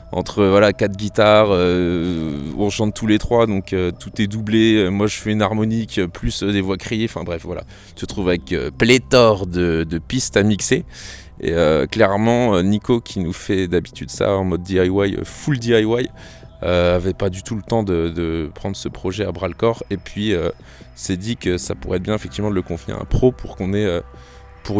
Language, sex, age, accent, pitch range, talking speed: French, male, 20-39, French, 95-110 Hz, 215 wpm